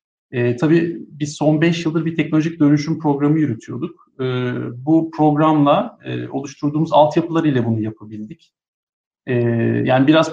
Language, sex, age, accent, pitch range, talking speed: Turkish, male, 50-69, native, 125-160 Hz, 135 wpm